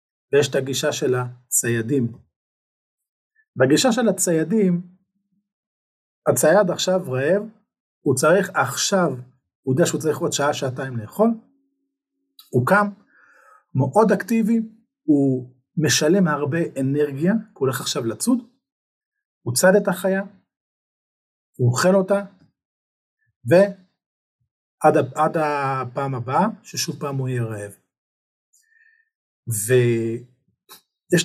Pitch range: 135-210 Hz